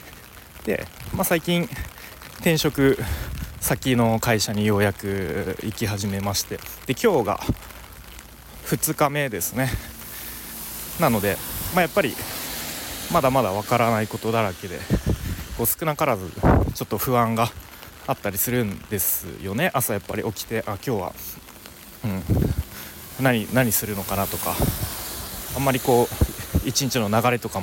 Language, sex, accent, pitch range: Japanese, male, native, 95-130 Hz